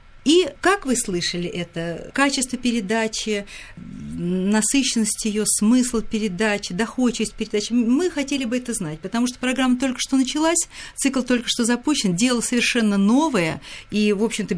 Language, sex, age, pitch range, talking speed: Russian, female, 50-69, 185-270 Hz, 140 wpm